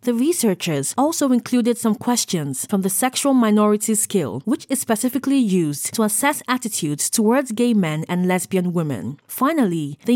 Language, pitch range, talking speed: English, 185-250 Hz, 155 wpm